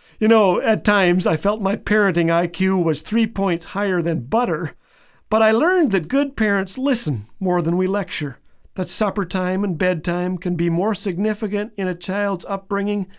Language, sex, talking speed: English, male, 175 wpm